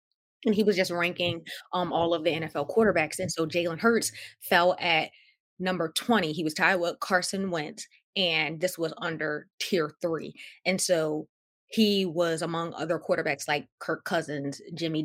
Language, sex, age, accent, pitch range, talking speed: English, female, 20-39, American, 155-185 Hz, 170 wpm